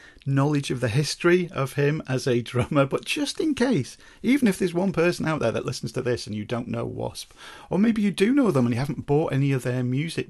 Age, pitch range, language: 40-59, 110-130 Hz, English